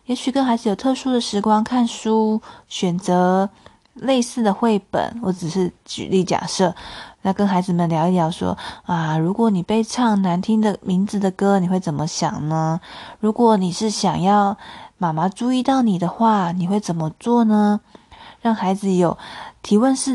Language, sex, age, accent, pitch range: Chinese, female, 20-39, native, 185-230 Hz